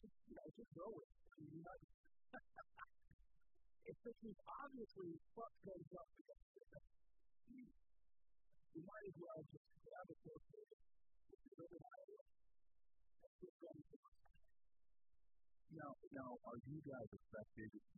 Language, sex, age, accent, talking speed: English, female, 40-59, American, 65 wpm